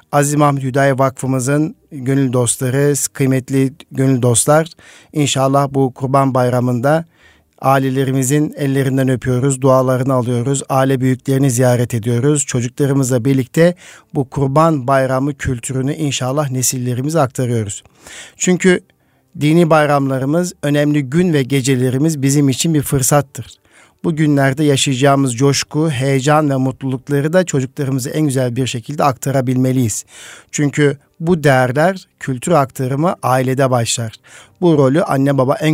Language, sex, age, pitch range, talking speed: Turkish, male, 50-69, 130-150 Hz, 115 wpm